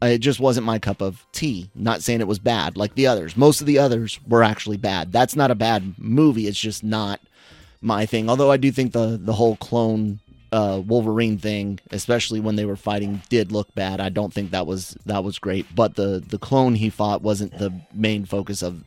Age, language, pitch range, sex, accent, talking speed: 30-49, English, 100-120 Hz, male, American, 225 wpm